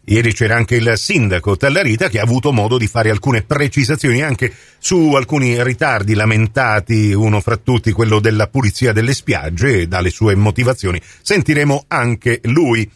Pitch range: 115-155 Hz